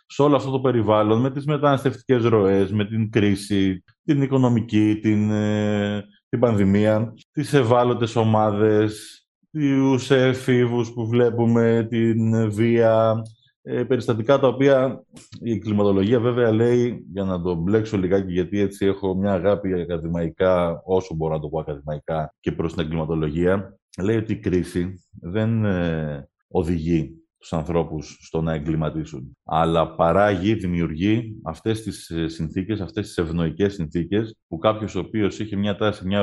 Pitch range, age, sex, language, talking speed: 90-120 Hz, 20-39, male, Greek, 135 wpm